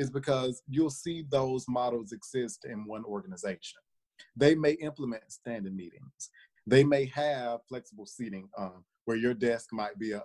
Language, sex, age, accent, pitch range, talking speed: English, male, 30-49, American, 105-130 Hz, 160 wpm